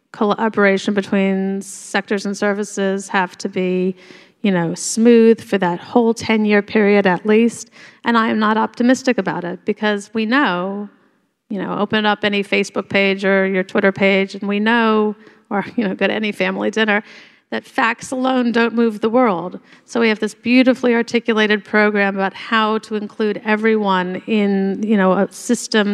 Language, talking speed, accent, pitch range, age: English, 170 wpm, American, 195-225 Hz, 40-59